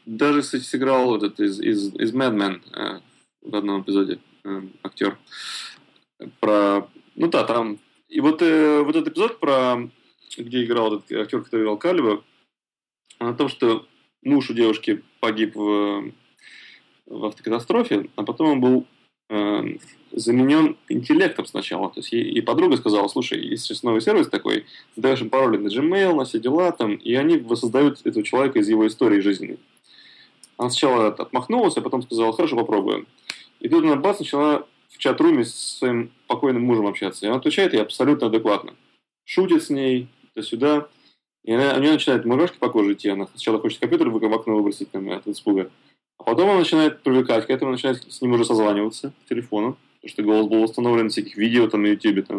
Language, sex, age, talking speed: Russian, male, 20-39, 175 wpm